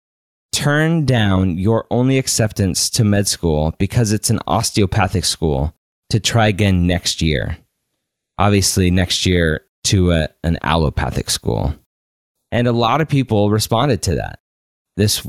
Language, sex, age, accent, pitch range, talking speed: English, male, 20-39, American, 90-120 Hz, 135 wpm